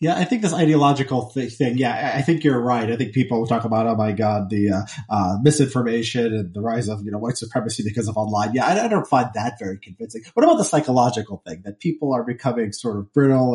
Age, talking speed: 30-49, 250 wpm